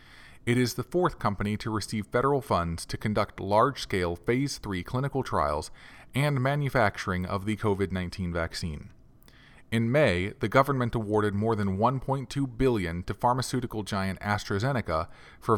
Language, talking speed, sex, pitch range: English, 145 wpm, male, 100-130 Hz